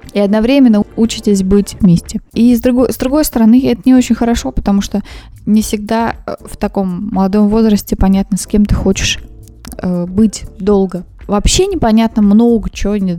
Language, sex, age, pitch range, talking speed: Russian, female, 20-39, 195-235 Hz, 155 wpm